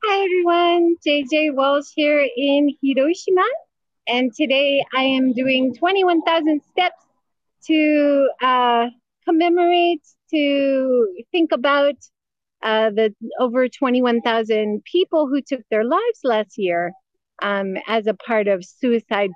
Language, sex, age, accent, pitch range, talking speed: English, female, 30-49, American, 215-280 Hz, 115 wpm